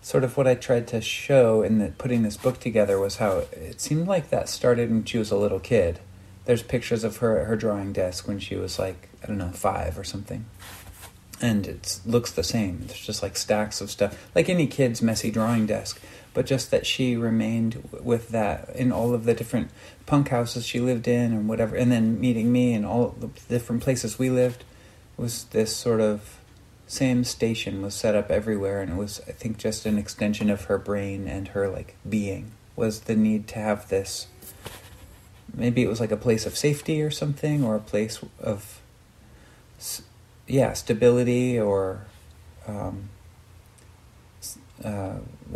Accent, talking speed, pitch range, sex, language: American, 185 wpm, 100-120 Hz, male, English